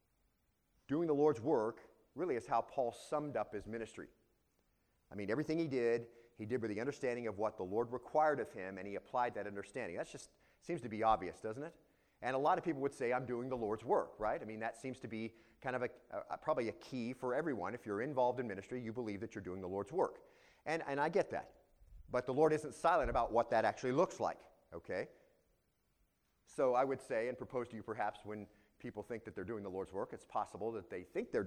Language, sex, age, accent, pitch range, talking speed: English, male, 40-59, American, 105-130 Hz, 235 wpm